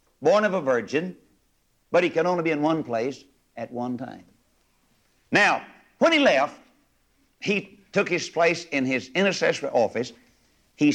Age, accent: 60-79, American